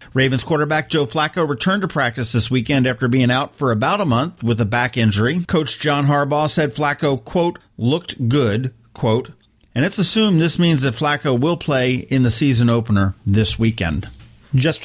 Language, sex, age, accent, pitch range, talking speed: English, male, 40-59, American, 115-155 Hz, 180 wpm